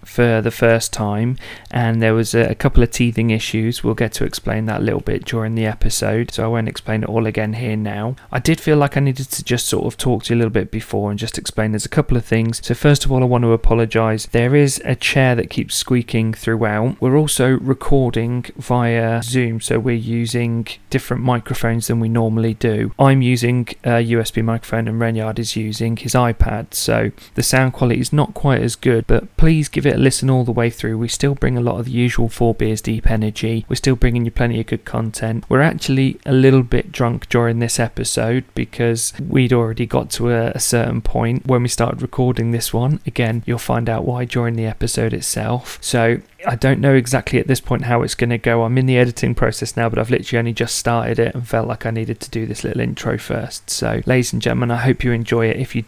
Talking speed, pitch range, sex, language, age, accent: 235 wpm, 115-125 Hz, male, English, 40-59, British